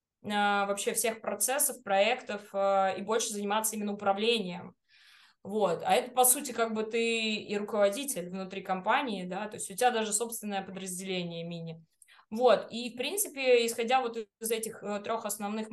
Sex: female